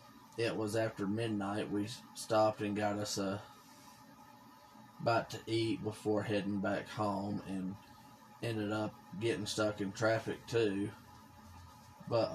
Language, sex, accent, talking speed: English, male, American, 125 wpm